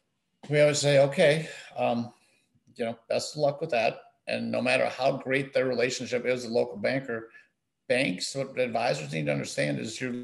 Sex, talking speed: male, 180 wpm